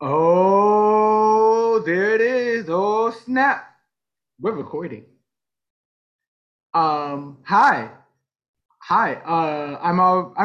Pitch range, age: 150-210 Hz, 20-39